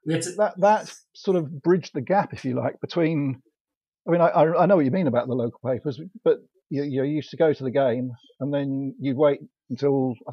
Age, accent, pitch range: 50-69, British, 120-140 Hz